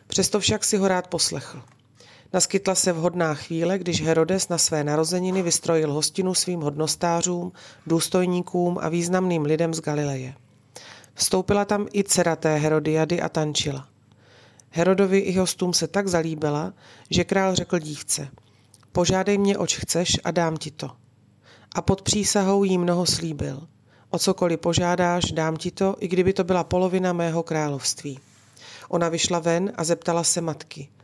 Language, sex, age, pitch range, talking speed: Slovak, female, 30-49, 145-180 Hz, 145 wpm